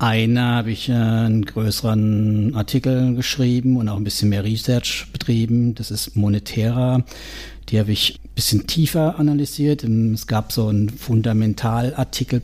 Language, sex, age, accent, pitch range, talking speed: German, male, 60-79, German, 100-120 Hz, 140 wpm